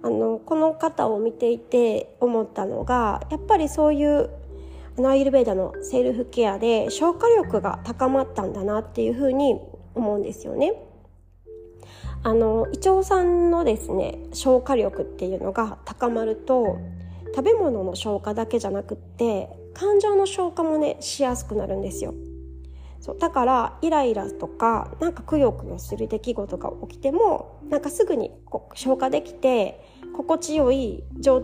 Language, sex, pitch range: Japanese, female, 195-285 Hz